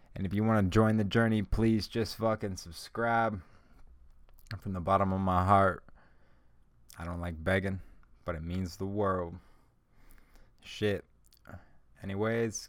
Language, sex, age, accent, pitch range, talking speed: English, male, 20-39, American, 90-115 Hz, 135 wpm